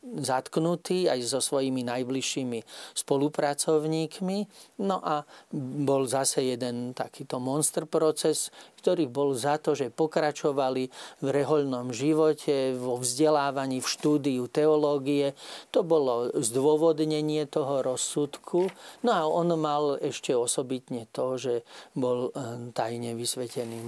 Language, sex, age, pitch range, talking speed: Slovak, male, 40-59, 130-160 Hz, 110 wpm